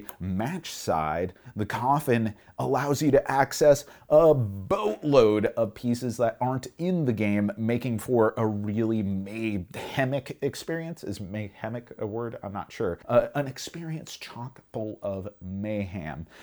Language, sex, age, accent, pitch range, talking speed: English, male, 30-49, American, 100-130 Hz, 135 wpm